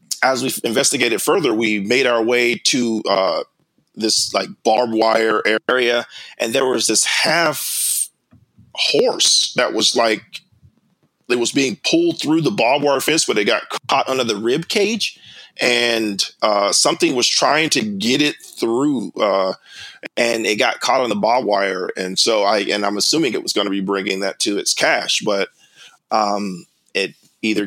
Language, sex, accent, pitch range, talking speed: English, male, American, 100-125 Hz, 170 wpm